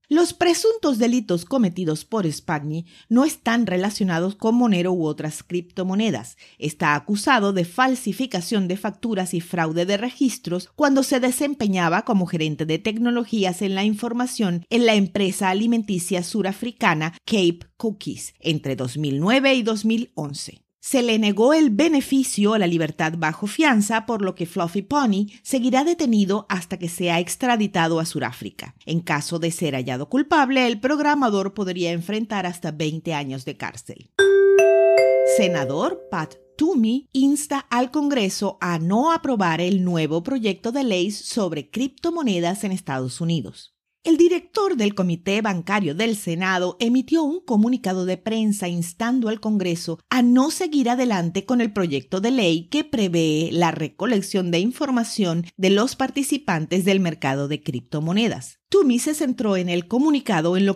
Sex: female